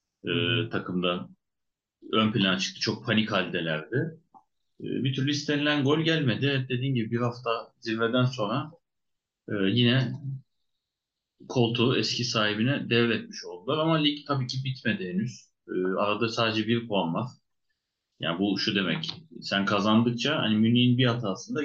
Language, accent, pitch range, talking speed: Turkish, native, 105-130 Hz, 125 wpm